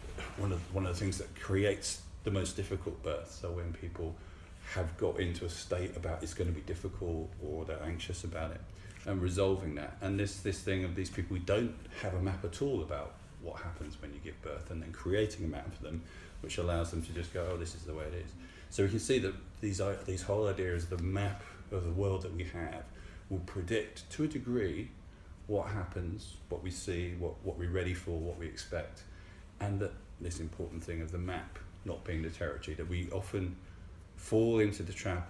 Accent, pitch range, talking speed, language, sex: British, 85-95 Hz, 220 wpm, English, male